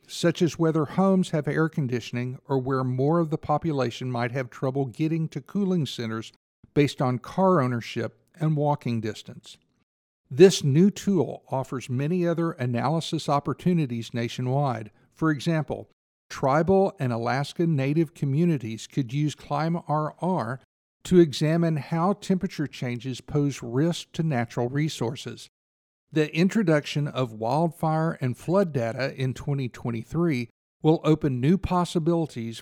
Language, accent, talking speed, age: English, American, 130 wpm, 50-69